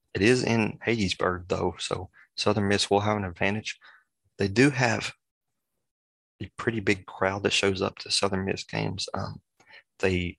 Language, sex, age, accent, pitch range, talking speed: English, male, 30-49, American, 90-100 Hz, 160 wpm